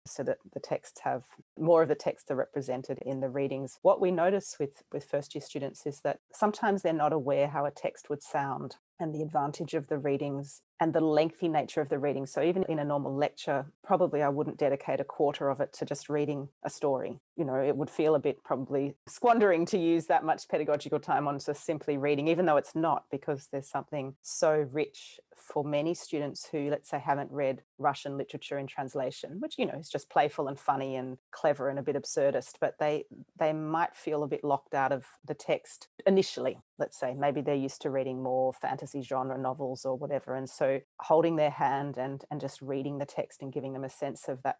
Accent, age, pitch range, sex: Australian, 30-49, 135-160 Hz, female